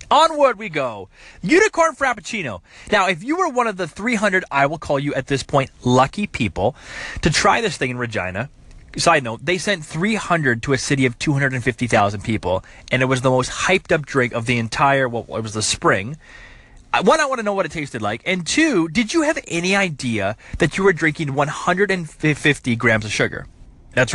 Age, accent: 30-49, American